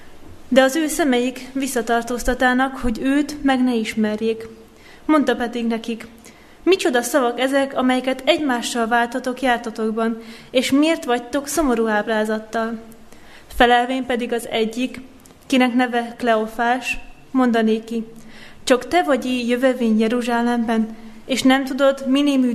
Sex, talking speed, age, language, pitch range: female, 110 wpm, 30-49, Hungarian, 230-260 Hz